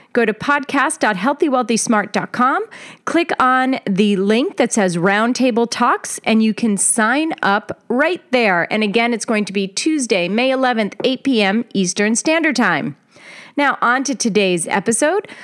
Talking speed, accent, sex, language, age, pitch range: 145 wpm, American, female, English, 30-49, 190-255 Hz